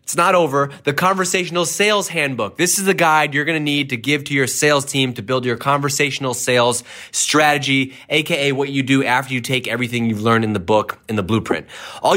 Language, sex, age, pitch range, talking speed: English, male, 20-39, 120-150 Hz, 215 wpm